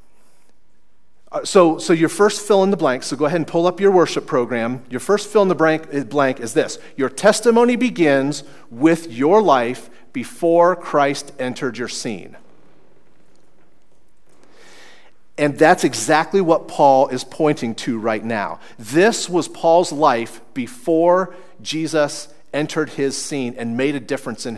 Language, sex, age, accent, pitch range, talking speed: English, male, 40-59, American, 130-170 Hz, 150 wpm